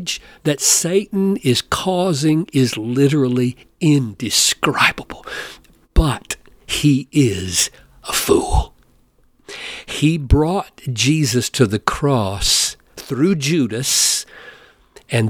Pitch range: 125-180 Hz